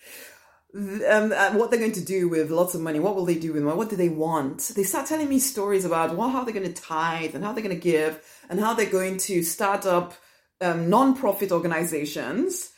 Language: English